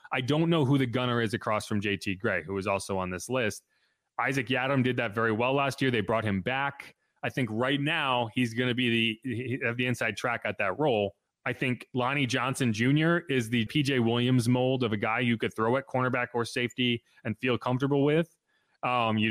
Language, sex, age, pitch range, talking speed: English, male, 30-49, 115-135 Hz, 220 wpm